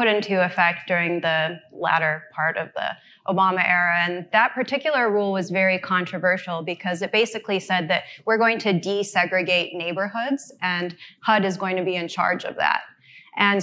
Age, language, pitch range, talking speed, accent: 20-39, English, 180-210 Hz, 170 wpm, American